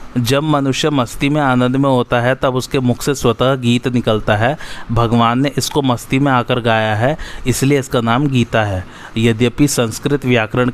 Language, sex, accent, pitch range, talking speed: Hindi, male, native, 115-135 Hz, 180 wpm